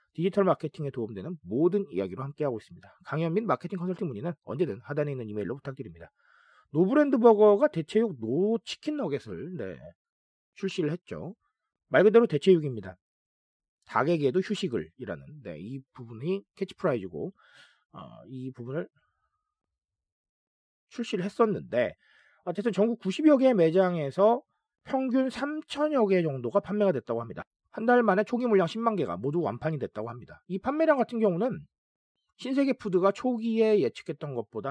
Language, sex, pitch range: Korean, male, 150-230 Hz